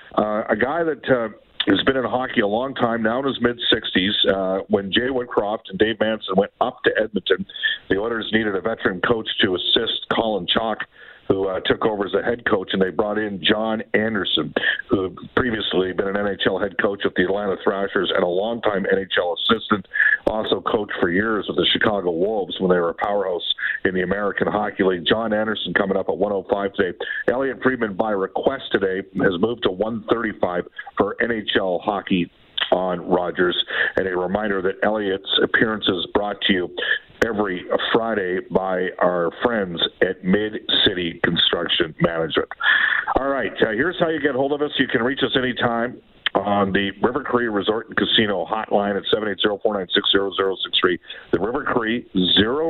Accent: American